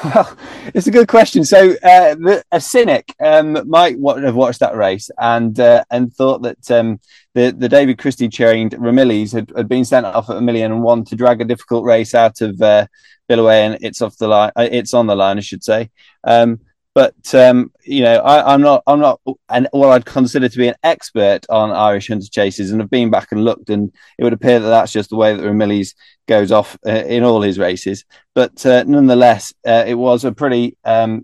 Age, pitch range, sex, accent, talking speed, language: 20-39, 105-120 Hz, male, British, 225 wpm, English